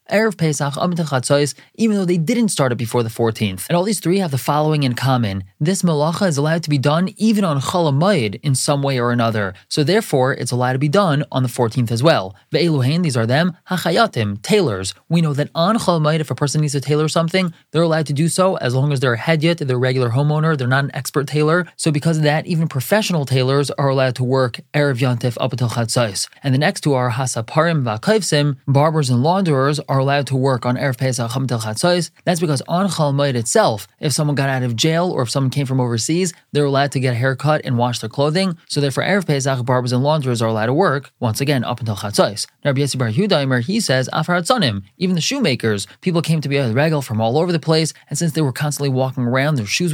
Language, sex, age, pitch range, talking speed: English, male, 20-39, 130-165 Hz, 225 wpm